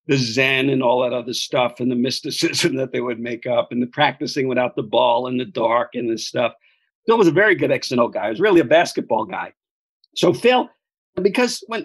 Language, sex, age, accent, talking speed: English, male, 50-69, American, 235 wpm